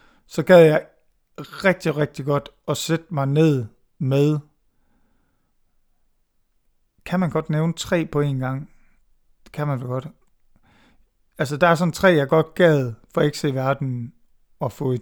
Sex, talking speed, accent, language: male, 160 wpm, Danish, English